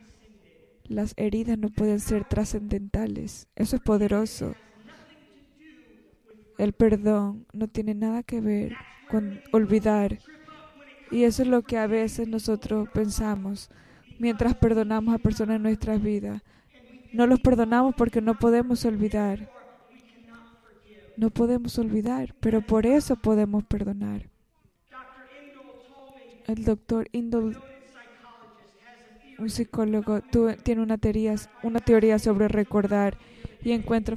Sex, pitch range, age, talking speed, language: female, 215-250 Hz, 20-39, 110 wpm, Spanish